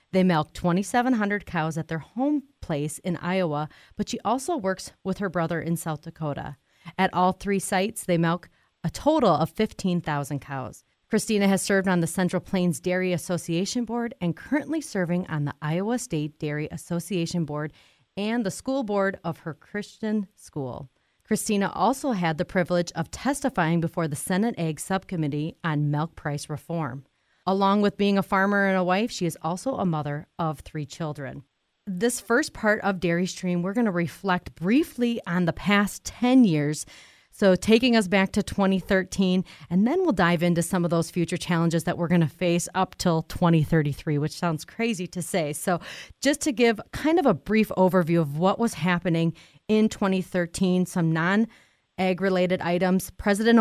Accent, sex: American, female